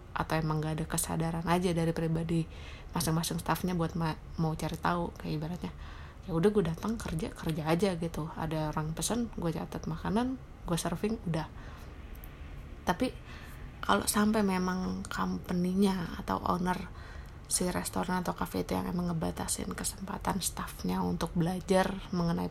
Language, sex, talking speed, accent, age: Indonesian, female, 145 wpm, native, 20-39